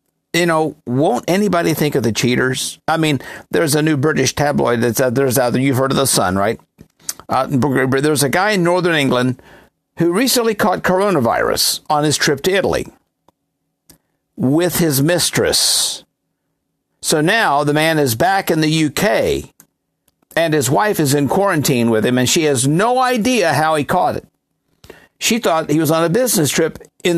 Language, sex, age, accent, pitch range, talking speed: English, male, 50-69, American, 140-175 Hz, 175 wpm